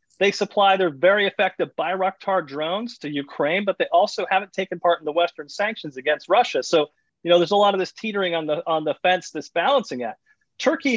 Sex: male